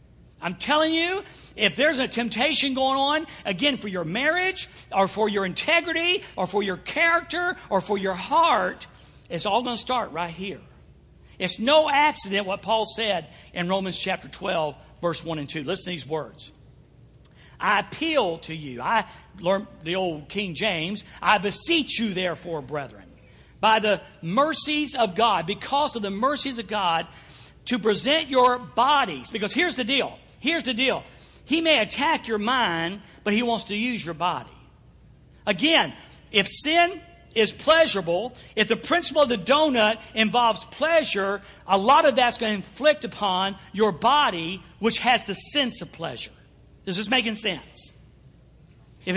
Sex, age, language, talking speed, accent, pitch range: male, 50-69, English, 160 wpm, American, 185-275 Hz